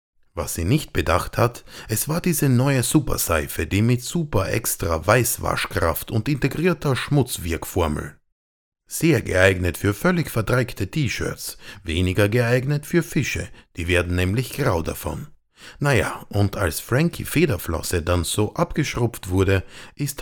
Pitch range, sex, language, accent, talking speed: 90-140 Hz, male, German, German, 130 wpm